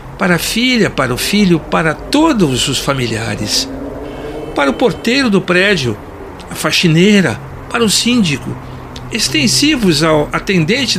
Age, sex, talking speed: 60-79, male, 125 wpm